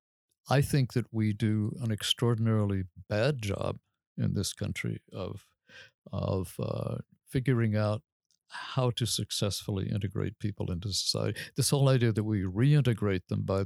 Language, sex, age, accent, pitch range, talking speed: English, male, 60-79, American, 100-125 Hz, 140 wpm